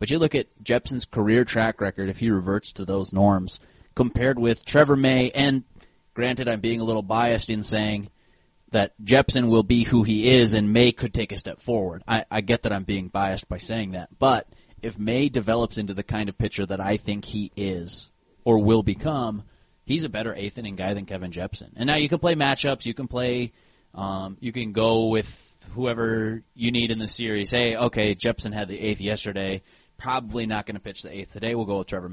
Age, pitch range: 30-49, 100-130 Hz